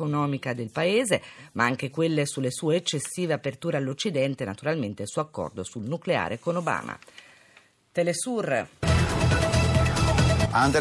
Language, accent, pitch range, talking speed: Italian, native, 140-185 Hz, 115 wpm